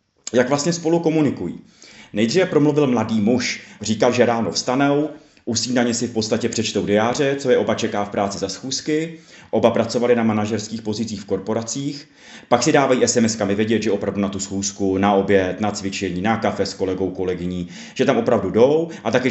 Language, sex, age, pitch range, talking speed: Czech, male, 30-49, 110-145 Hz, 185 wpm